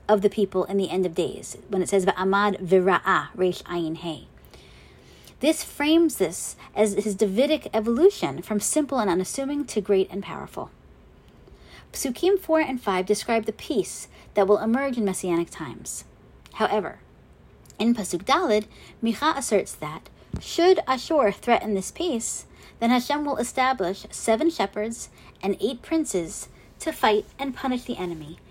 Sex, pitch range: female, 195-260 Hz